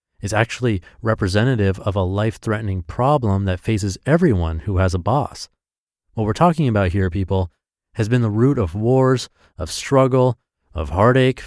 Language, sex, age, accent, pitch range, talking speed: English, male, 30-49, American, 90-125 Hz, 155 wpm